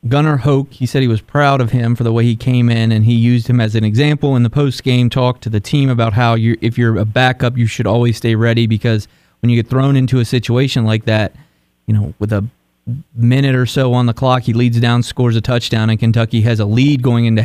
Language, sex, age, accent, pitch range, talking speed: English, male, 30-49, American, 115-140 Hz, 260 wpm